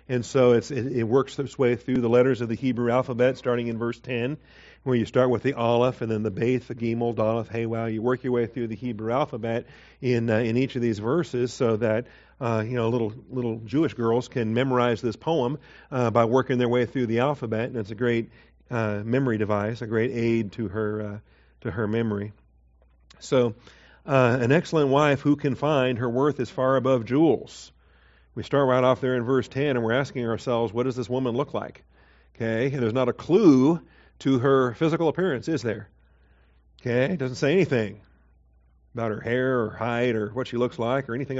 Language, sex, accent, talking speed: English, male, American, 215 wpm